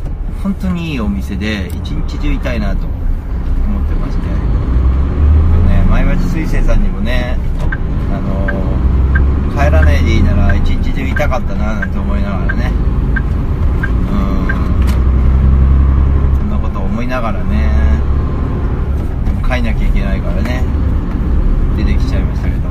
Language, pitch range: Japanese, 70-90 Hz